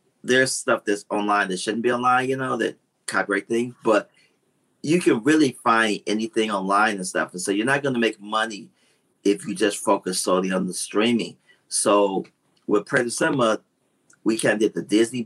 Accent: American